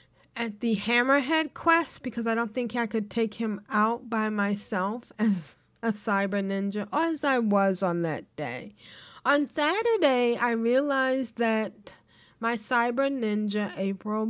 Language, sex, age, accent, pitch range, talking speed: English, female, 40-59, American, 195-245 Hz, 145 wpm